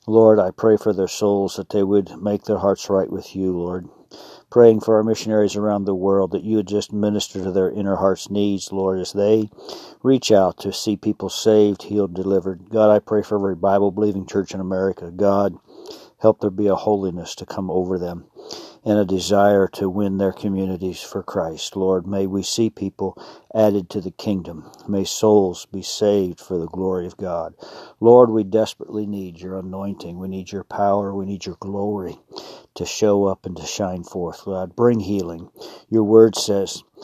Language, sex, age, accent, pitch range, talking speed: English, male, 50-69, American, 95-105 Hz, 190 wpm